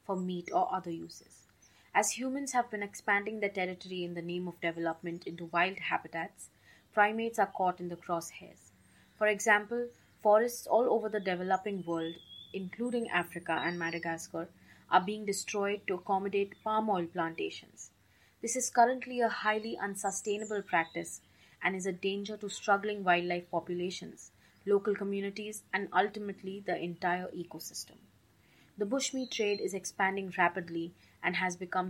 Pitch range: 175-210 Hz